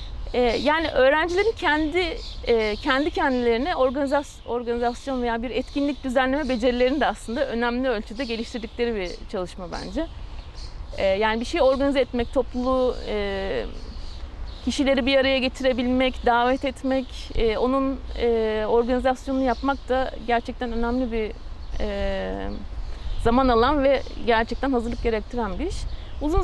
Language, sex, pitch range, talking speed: Turkish, female, 215-275 Hz, 105 wpm